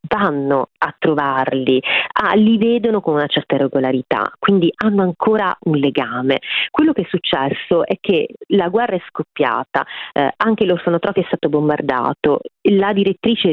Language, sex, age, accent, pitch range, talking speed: Italian, female, 30-49, native, 150-235 Hz, 150 wpm